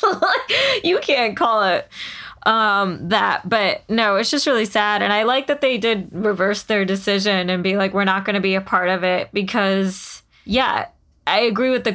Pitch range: 185-210 Hz